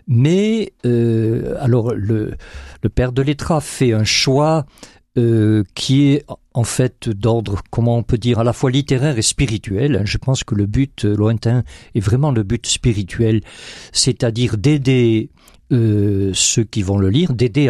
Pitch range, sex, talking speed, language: 110-145 Hz, male, 155 wpm, French